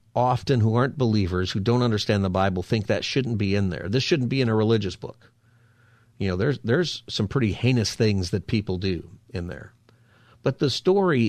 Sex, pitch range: male, 100-120 Hz